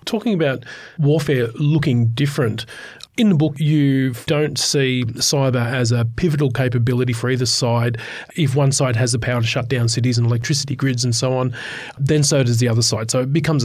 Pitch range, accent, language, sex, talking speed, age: 120-145 Hz, Australian, English, male, 195 wpm, 30-49